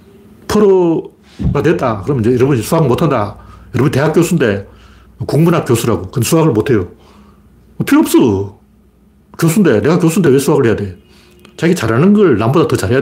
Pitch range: 120-180 Hz